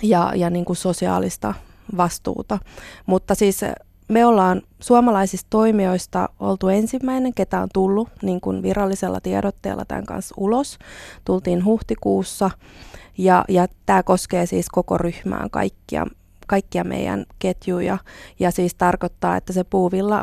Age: 20-39